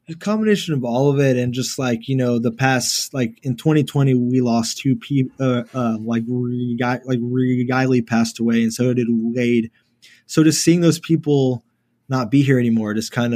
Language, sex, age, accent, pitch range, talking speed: English, male, 20-39, American, 115-130 Hz, 200 wpm